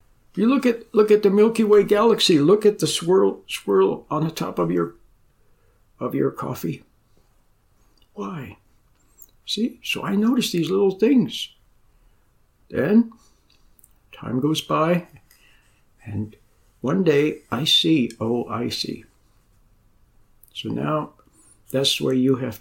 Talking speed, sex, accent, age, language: 125 wpm, male, American, 60-79, English